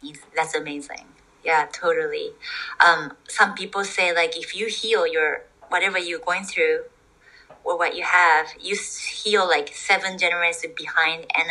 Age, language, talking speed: 30-49, English, 145 wpm